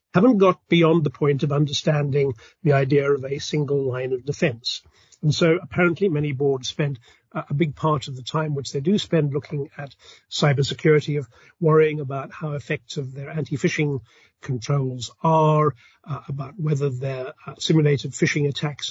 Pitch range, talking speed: 135-160 Hz, 160 wpm